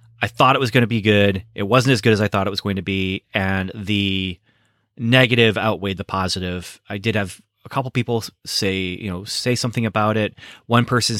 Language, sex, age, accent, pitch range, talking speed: English, male, 30-49, American, 100-125 Hz, 220 wpm